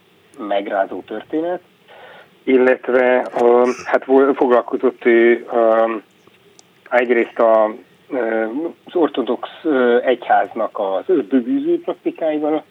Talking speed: 85 wpm